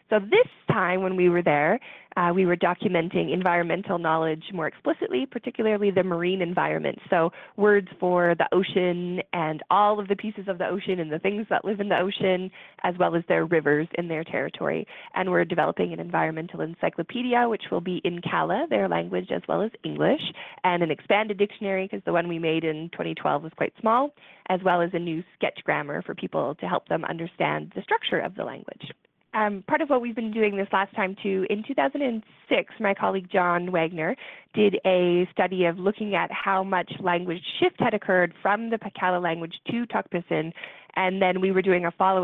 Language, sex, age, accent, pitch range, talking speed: English, female, 20-39, American, 170-200 Hz, 195 wpm